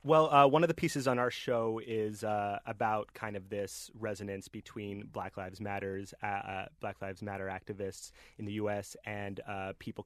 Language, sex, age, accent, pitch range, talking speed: English, male, 30-49, American, 100-115 Hz, 190 wpm